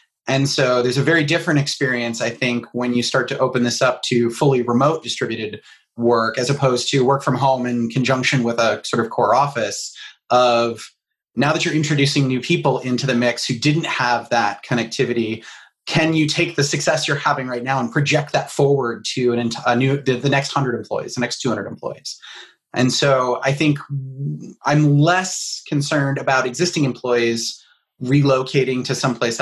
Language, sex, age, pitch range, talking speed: English, male, 30-49, 120-140 Hz, 185 wpm